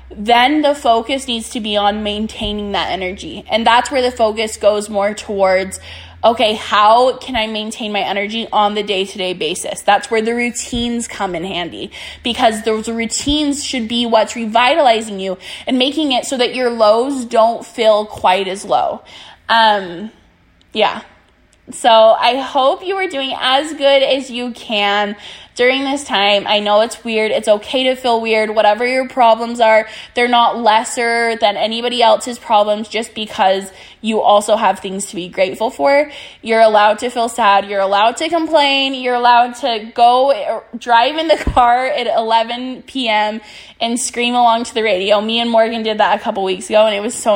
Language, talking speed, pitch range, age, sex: English, 180 wpm, 210-250 Hz, 10-29, female